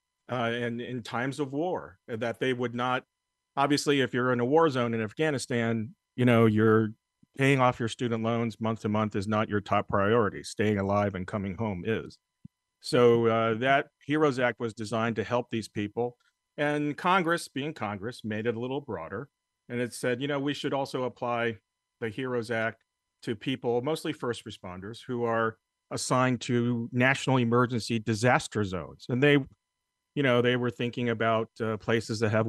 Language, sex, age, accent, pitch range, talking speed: English, male, 40-59, American, 105-130 Hz, 180 wpm